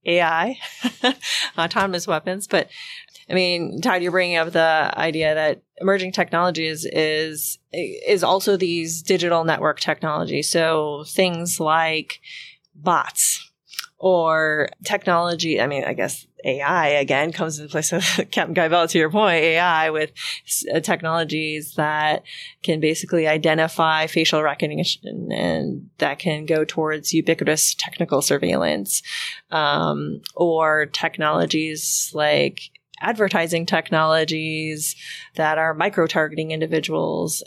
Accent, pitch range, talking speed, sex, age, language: American, 155-180 Hz, 115 wpm, female, 30-49, English